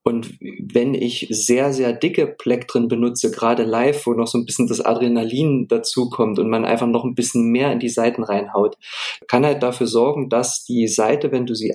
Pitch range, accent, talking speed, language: 115-135 Hz, German, 205 wpm, German